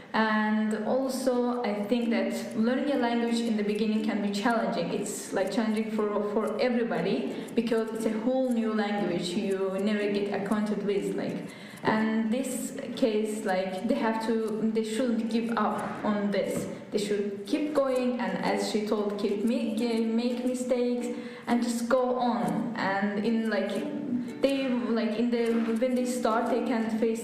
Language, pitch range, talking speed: Portuguese, 210-240 Hz, 165 wpm